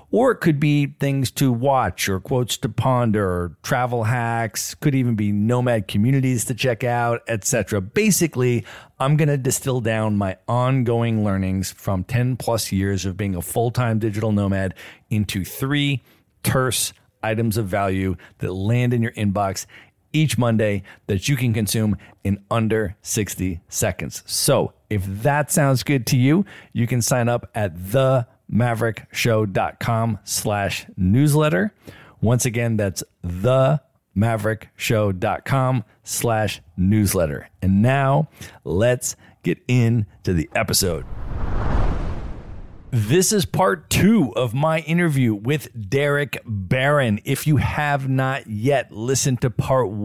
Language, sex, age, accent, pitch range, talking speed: English, male, 40-59, American, 105-130 Hz, 135 wpm